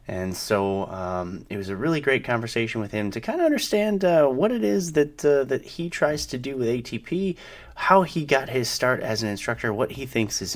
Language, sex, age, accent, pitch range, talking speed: English, male, 30-49, American, 90-130 Hz, 225 wpm